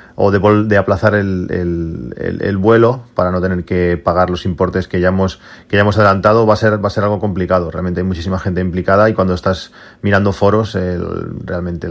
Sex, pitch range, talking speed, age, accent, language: male, 90-105 Hz, 185 wpm, 30-49, Spanish, Spanish